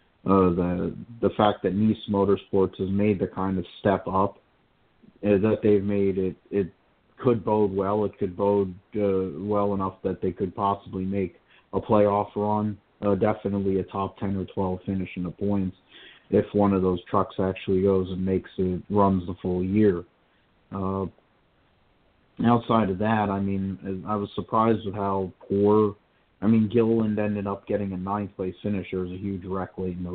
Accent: American